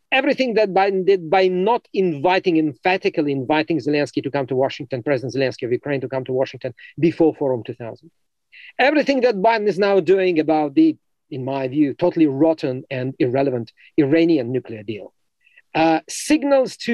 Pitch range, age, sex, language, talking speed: 150-210 Hz, 50-69, male, English, 165 wpm